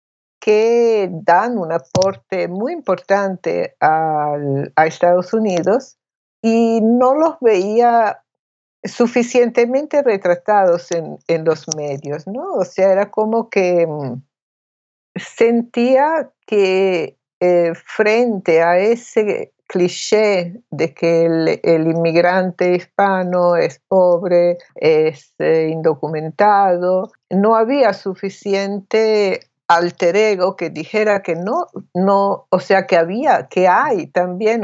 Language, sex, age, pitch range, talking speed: Spanish, female, 60-79, 165-210 Hz, 100 wpm